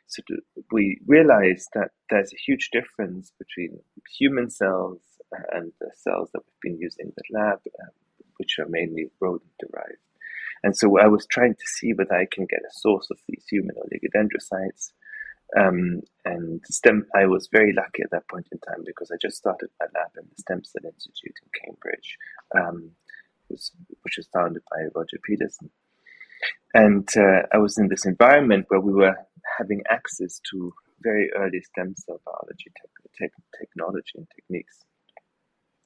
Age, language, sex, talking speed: 30-49, English, male, 165 wpm